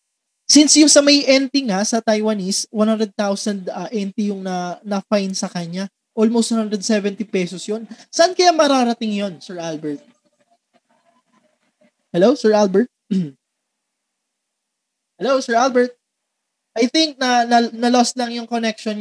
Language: Filipino